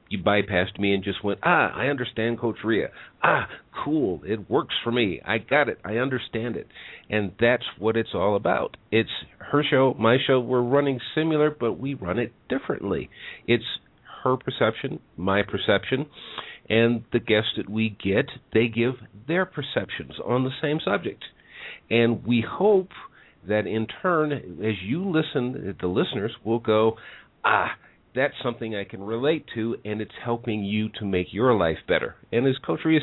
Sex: male